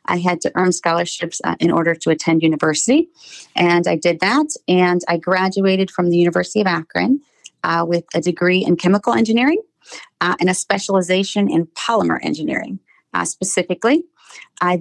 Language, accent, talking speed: English, American, 160 wpm